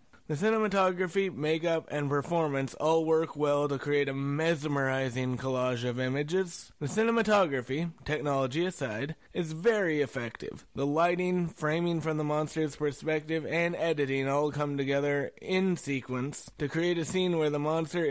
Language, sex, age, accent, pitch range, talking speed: English, male, 20-39, American, 135-170 Hz, 145 wpm